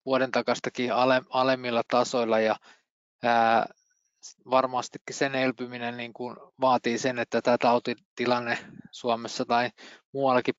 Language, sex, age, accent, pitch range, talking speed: Finnish, male, 20-39, native, 115-130 Hz, 100 wpm